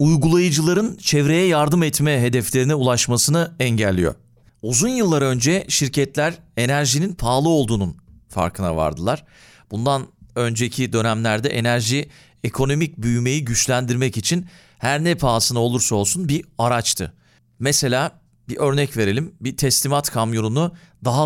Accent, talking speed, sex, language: native, 110 wpm, male, Turkish